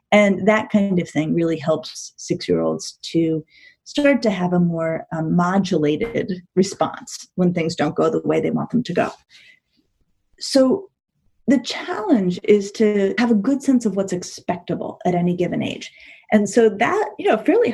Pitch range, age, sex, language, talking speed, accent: 175-230 Hz, 30-49, female, English, 170 wpm, American